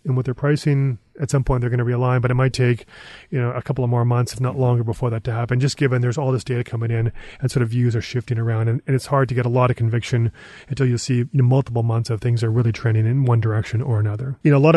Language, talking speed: English, 305 wpm